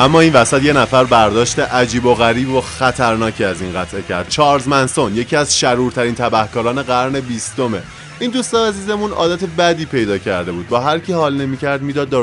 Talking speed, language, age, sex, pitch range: 180 wpm, Persian, 20-39, male, 115-150 Hz